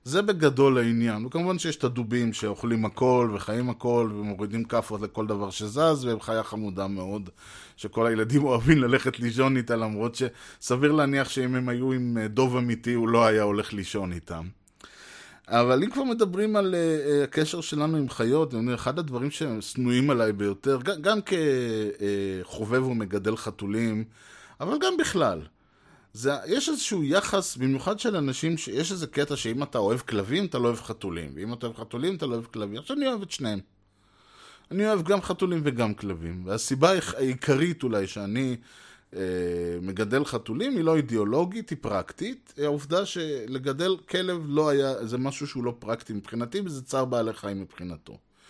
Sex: male